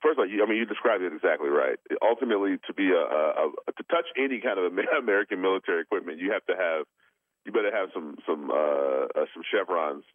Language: English